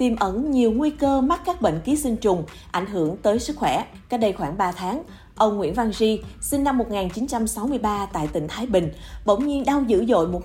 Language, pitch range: Vietnamese, 180-245 Hz